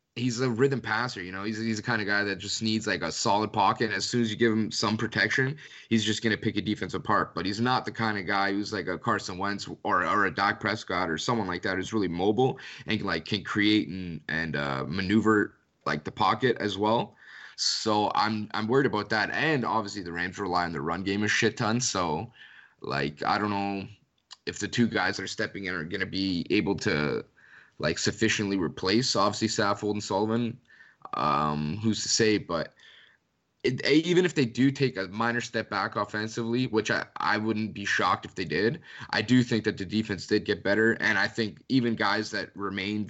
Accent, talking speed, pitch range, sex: American, 220 wpm, 100-115 Hz, male